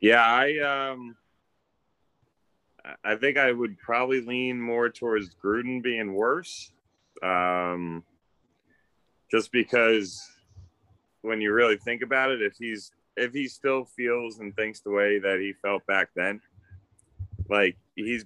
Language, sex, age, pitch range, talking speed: English, male, 30-49, 85-105 Hz, 130 wpm